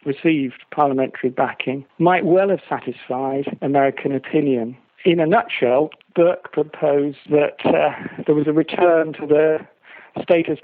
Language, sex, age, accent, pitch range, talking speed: English, male, 50-69, British, 135-155 Hz, 130 wpm